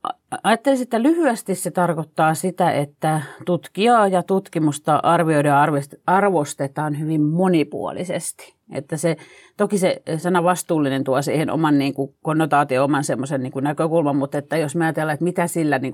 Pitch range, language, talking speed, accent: 145-175 Hz, Finnish, 145 wpm, native